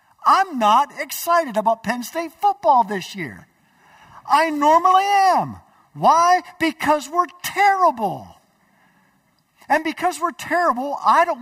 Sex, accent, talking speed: male, American, 115 wpm